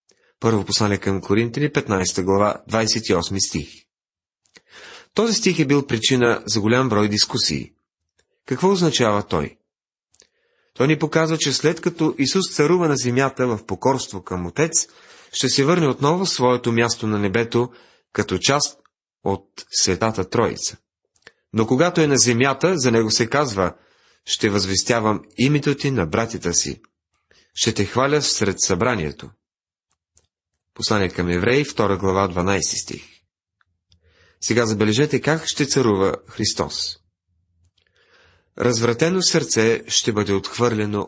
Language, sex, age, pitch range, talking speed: Bulgarian, male, 30-49, 100-140 Hz, 125 wpm